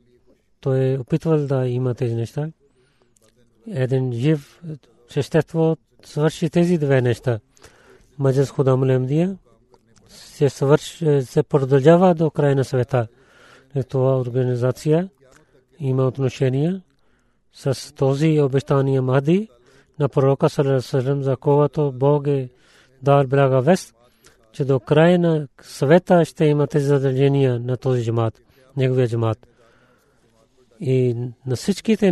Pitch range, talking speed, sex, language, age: 130-155 Hz, 110 wpm, male, Bulgarian, 40-59